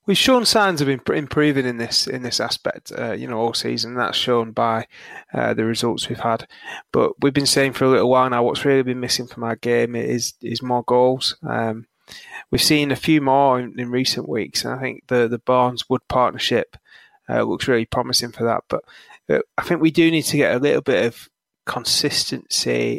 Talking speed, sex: 210 wpm, male